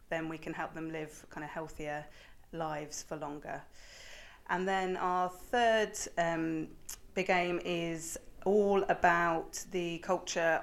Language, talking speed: English, 135 wpm